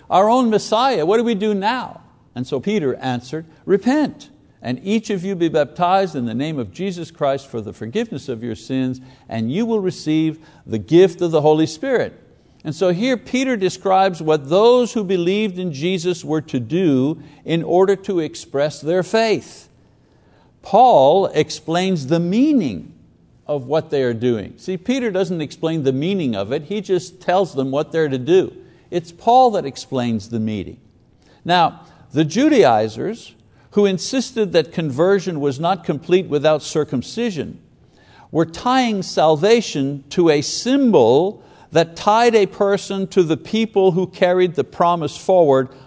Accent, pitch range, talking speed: American, 140-195 Hz, 160 wpm